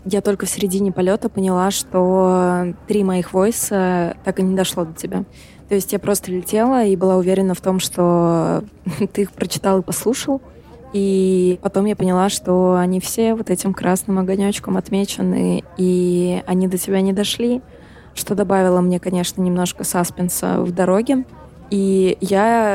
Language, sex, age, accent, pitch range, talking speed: Russian, female, 20-39, native, 180-205 Hz, 160 wpm